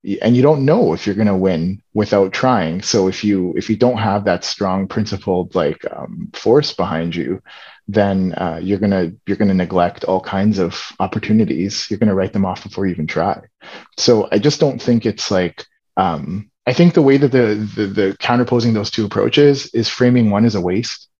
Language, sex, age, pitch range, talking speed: English, male, 30-49, 100-120 Hz, 210 wpm